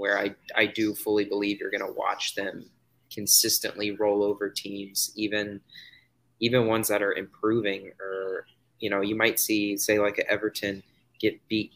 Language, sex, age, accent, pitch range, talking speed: English, male, 20-39, American, 100-125 Hz, 170 wpm